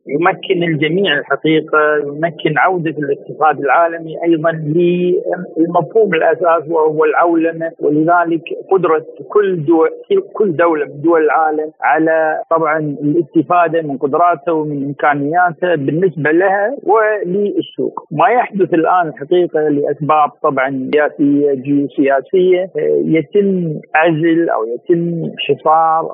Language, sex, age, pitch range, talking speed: Arabic, male, 50-69, 155-185 Hz, 100 wpm